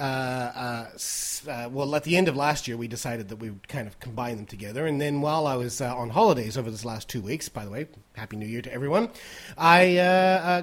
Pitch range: 125-175 Hz